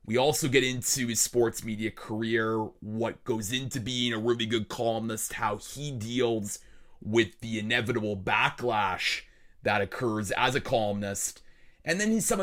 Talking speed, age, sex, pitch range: 150 wpm, 30-49, male, 110-145 Hz